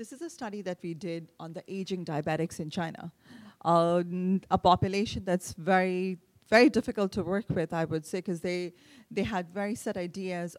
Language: English